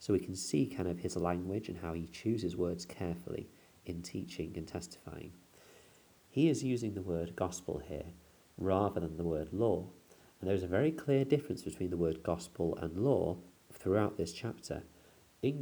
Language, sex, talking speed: English, male, 175 wpm